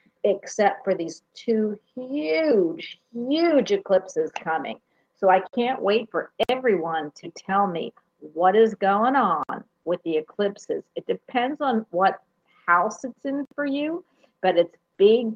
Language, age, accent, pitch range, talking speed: English, 50-69, American, 185-250 Hz, 140 wpm